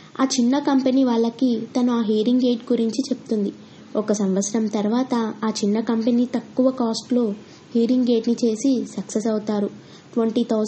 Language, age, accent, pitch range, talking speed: Telugu, 20-39, native, 210-245 Hz, 135 wpm